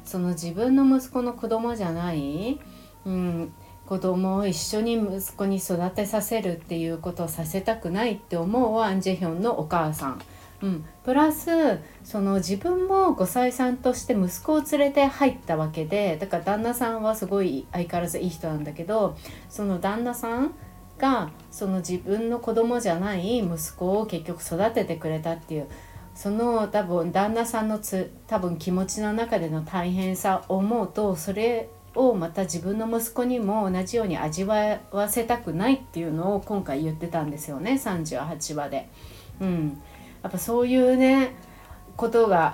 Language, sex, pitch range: Japanese, female, 170-230 Hz